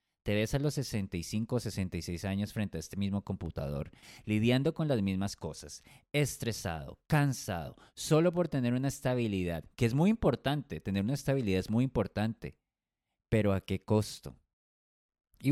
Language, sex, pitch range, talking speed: Spanish, male, 100-135 Hz, 155 wpm